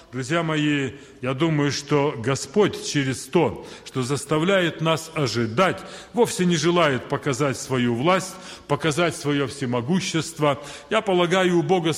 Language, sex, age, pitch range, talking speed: Russian, male, 40-59, 135-170 Hz, 125 wpm